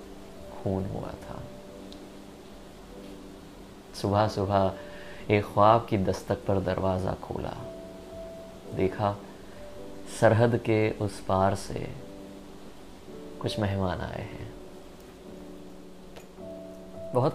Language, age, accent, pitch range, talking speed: Hindi, 20-39, native, 95-125 Hz, 75 wpm